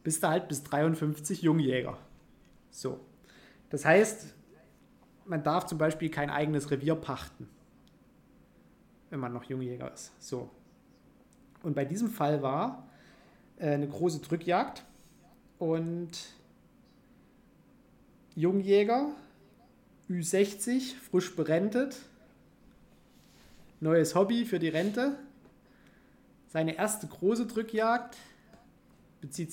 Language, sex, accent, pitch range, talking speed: German, male, German, 150-215 Hz, 95 wpm